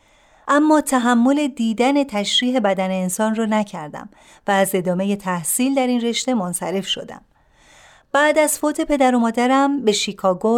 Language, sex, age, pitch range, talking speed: Persian, female, 40-59, 200-275 Hz, 140 wpm